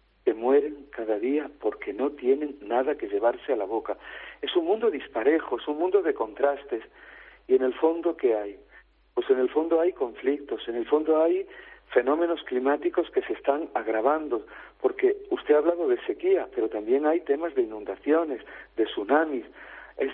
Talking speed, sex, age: 175 wpm, male, 50-69